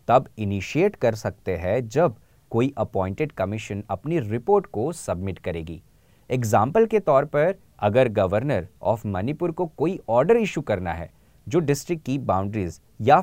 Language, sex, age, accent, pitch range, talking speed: Hindi, male, 30-49, native, 100-160 Hz, 150 wpm